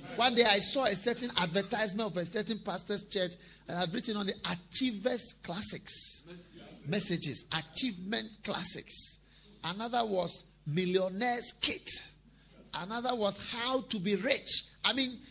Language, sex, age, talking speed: English, male, 50-69, 135 wpm